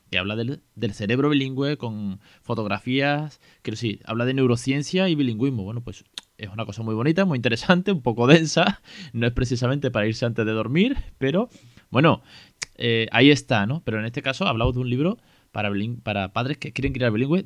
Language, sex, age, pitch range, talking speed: Spanish, male, 20-39, 105-140 Hz, 195 wpm